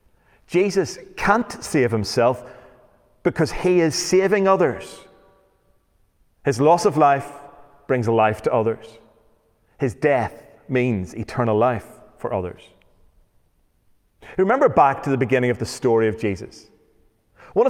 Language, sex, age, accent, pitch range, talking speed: English, male, 30-49, British, 110-155 Hz, 120 wpm